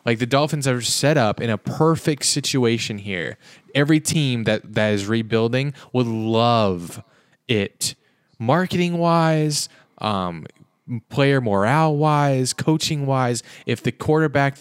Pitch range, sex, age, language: 115-145 Hz, male, 20-39, English